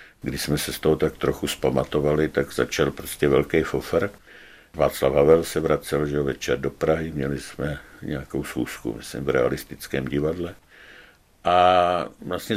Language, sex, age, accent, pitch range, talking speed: Czech, male, 60-79, native, 75-95 Hz, 140 wpm